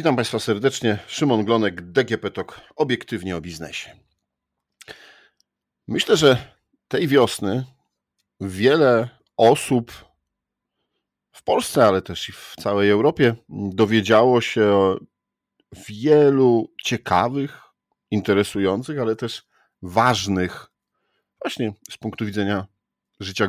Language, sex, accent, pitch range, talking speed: Polish, male, native, 95-120 Hz, 95 wpm